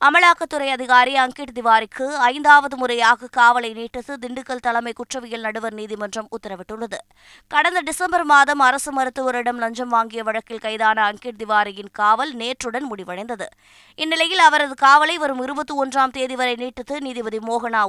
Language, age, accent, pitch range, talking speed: Tamil, 20-39, native, 230-280 Hz, 130 wpm